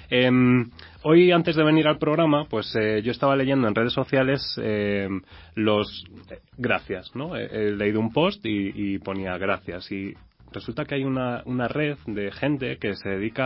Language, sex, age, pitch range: Spanish, male, 30-49, 105-135 Hz